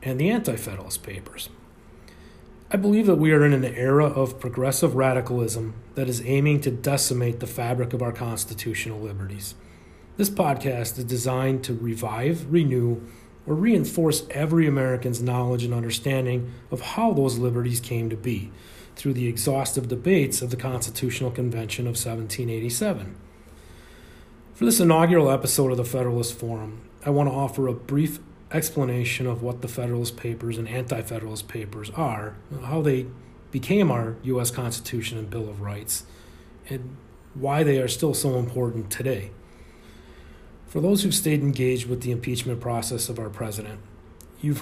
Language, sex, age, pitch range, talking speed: English, male, 40-59, 115-135 Hz, 150 wpm